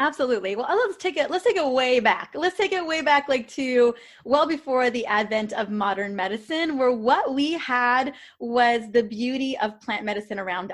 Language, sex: English, female